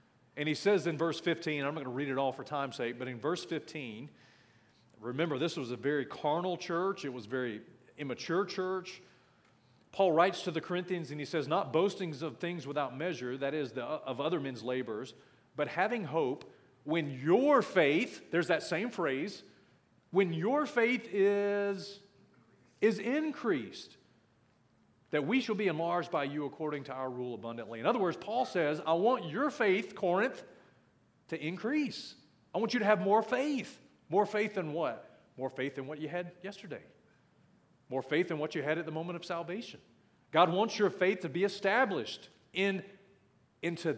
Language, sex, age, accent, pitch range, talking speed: English, male, 40-59, American, 140-195 Hz, 180 wpm